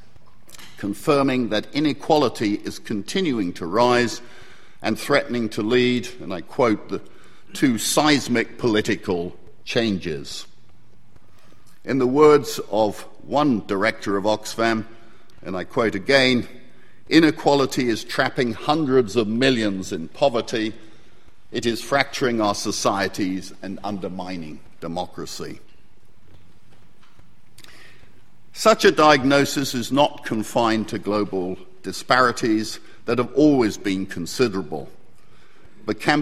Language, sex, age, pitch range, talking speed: English, male, 50-69, 105-135 Hz, 105 wpm